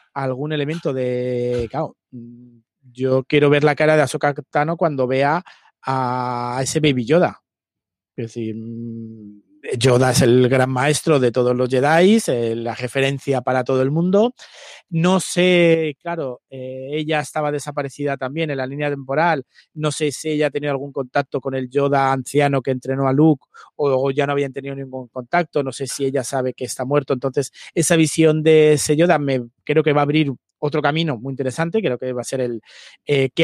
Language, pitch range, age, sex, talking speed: Spanish, 130-150 Hz, 30-49, male, 185 wpm